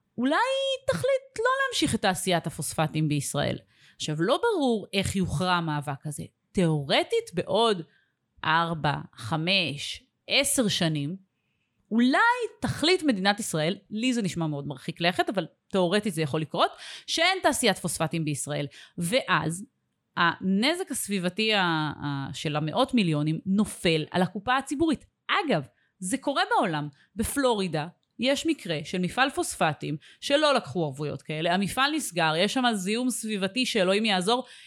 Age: 30-49